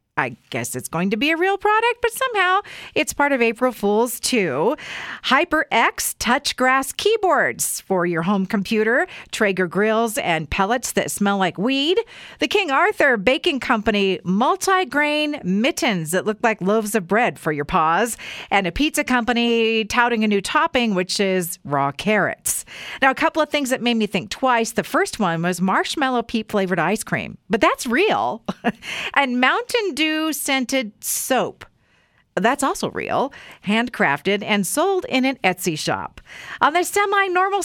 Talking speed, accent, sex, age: 160 wpm, American, female, 50-69